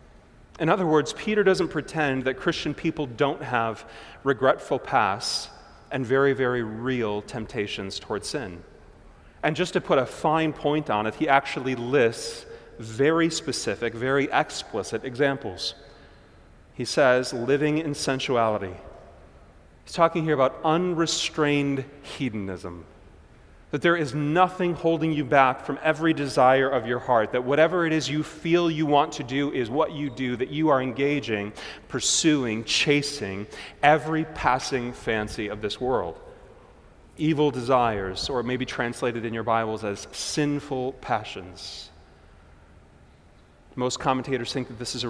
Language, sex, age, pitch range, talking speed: English, male, 30-49, 115-145 Hz, 140 wpm